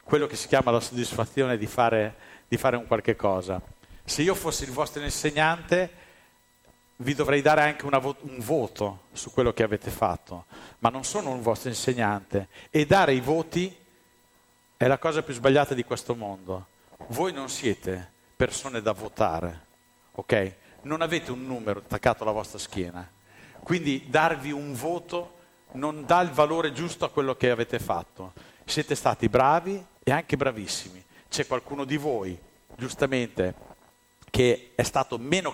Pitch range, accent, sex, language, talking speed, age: 115-150 Hz, native, male, Italian, 160 wpm, 50-69